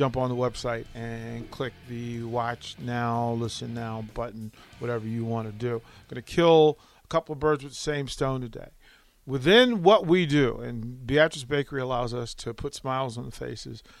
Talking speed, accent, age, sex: 195 wpm, American, 40-59, male